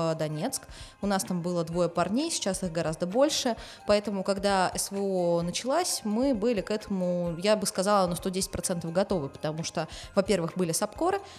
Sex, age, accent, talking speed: female, 20-39, native, 160 wpm